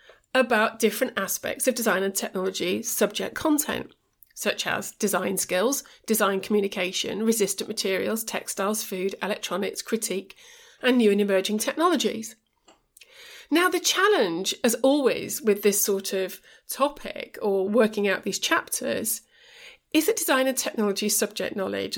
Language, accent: English, British